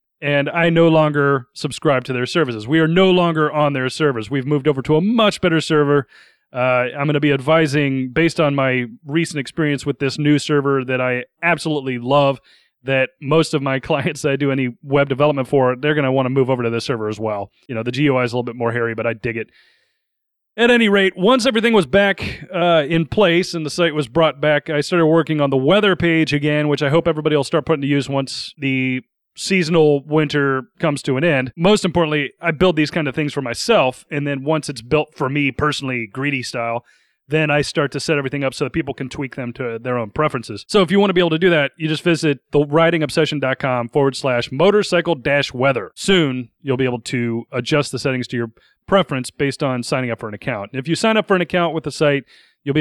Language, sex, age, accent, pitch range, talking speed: English, male, 30-49, American, 130-165 Hz, 235 wpm